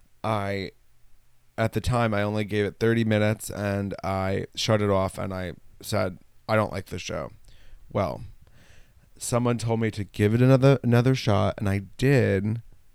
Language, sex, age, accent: English, male, 20-39, American